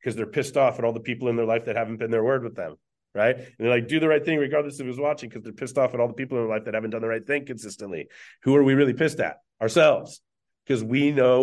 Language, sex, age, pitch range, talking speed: English, male, 30-49, 115-140 Hz, 305 wpm